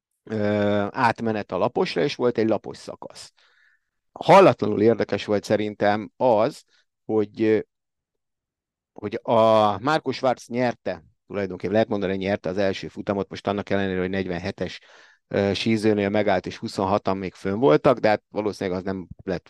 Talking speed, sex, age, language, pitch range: 135 wpm, male, 50-69, Hungarian, 95-110 Hz